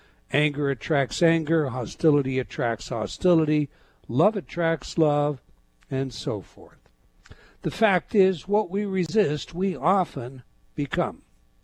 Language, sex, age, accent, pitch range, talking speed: English, male, 60-79, American, 135-185 Hz, 110 wpm